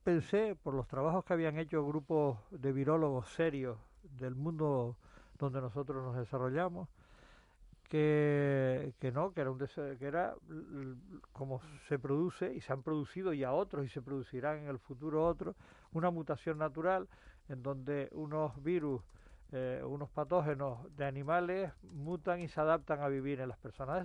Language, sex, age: Spanish, male, 50-69